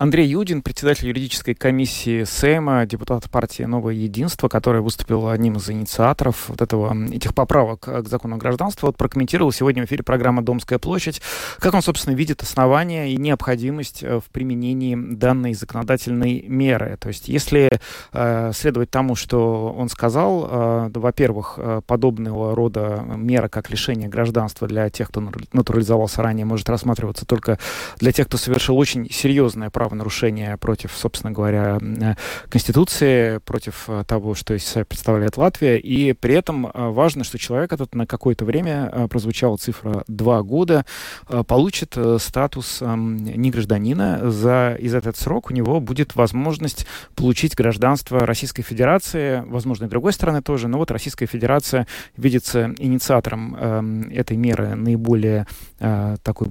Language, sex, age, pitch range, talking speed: Russian, male, 30-49, 110-130 Hz, 135 wpm